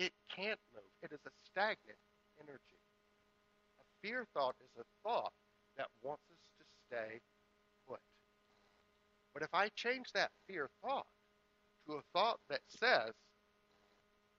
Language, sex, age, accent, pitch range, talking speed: English, male, 60-79, American, 140-210 Hz, 130 wpm